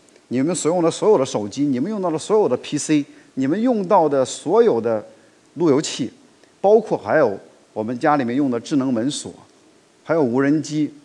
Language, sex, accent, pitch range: Chinese, male, native, 130-180 Hz